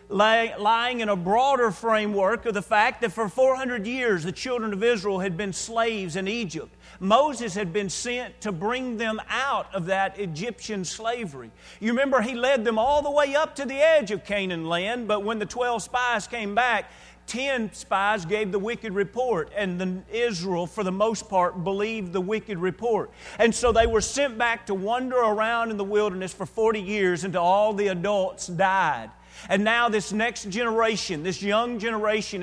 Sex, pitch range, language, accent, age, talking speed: male, 185-230 Hz, English, American, 40-59, 185 wpm